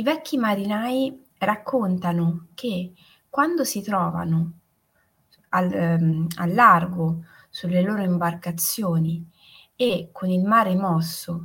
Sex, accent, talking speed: female, native, 105 wpm